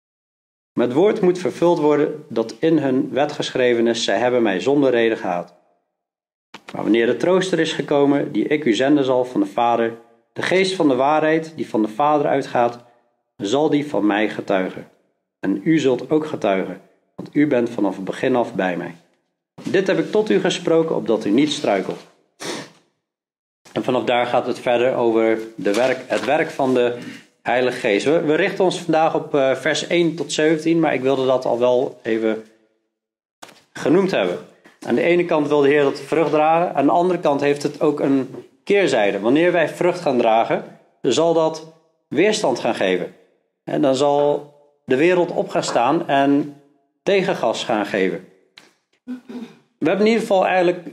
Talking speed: 175 wpm